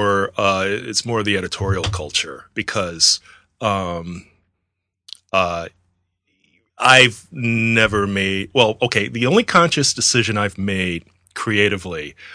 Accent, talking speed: American, 105 wpm